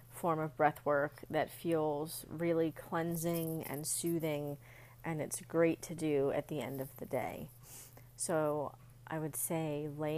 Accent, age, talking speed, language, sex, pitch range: American, 30-49, 155 wpm, English, female, 125-170 Hz